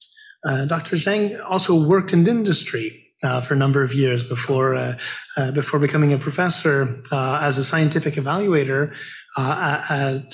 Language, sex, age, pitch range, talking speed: English, male, 30-49, 135-170 Hz, 155 wpm